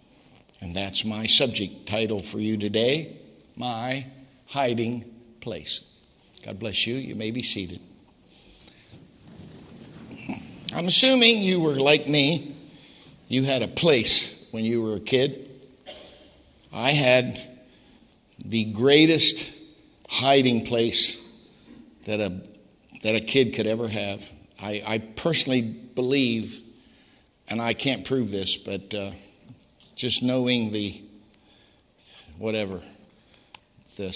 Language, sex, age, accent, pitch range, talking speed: English, male, 60-79, American, 105-130 Hz, 110 wpm